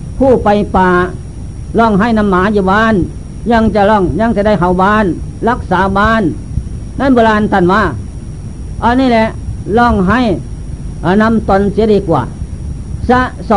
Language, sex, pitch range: Thai, female, 190-230 Hz